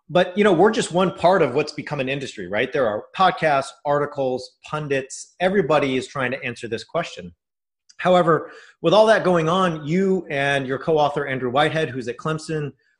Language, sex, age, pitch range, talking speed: English, male, 30-49, 130-165 Hz, 185 wpm